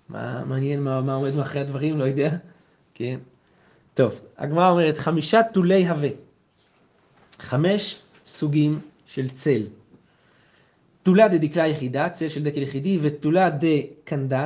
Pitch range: 140-175 Hz